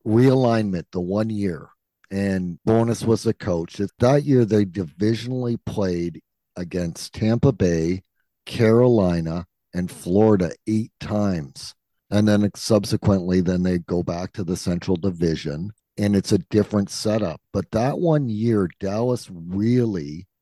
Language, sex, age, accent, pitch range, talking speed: English, male, 50-69, American, 85-110 Hz, 130 wpm